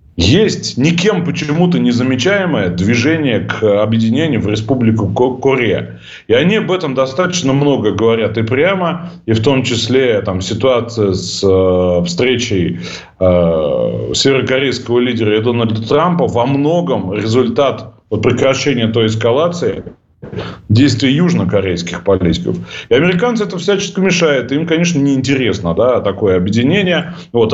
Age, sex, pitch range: 30-49, male, 105-145 Hz